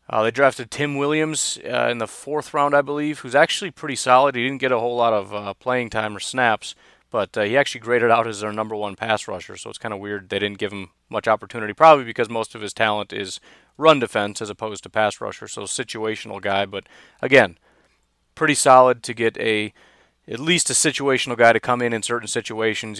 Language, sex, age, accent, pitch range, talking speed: English, male, 30-49, American, 105-125 Hz, 225 wpm